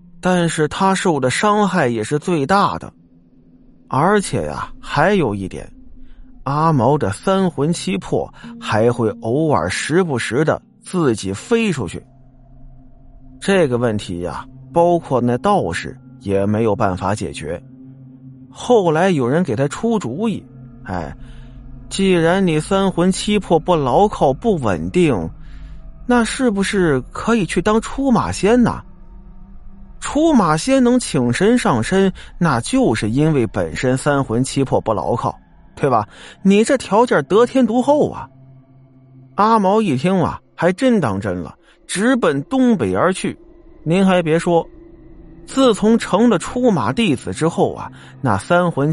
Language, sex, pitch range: Chinese, male, 125-195 Hz